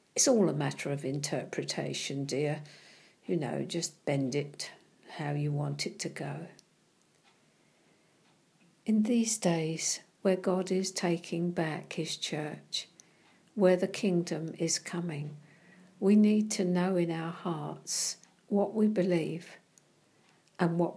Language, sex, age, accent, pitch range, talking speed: English, female, 60-79, British, 160-195 Hz, 130 wpm